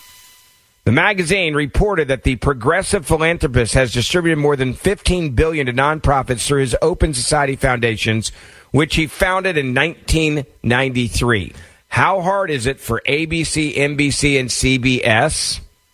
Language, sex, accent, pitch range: English, male, American, 110-140 Hz